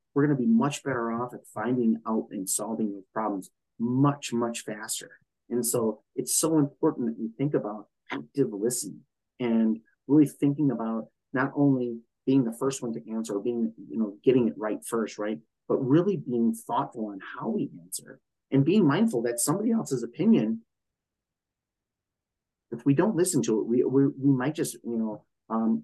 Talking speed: 180 wpm